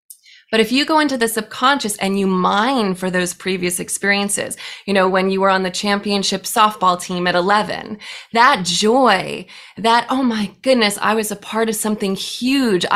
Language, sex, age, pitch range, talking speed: English, female, 20-39, 190-225 Hz, 180 wpm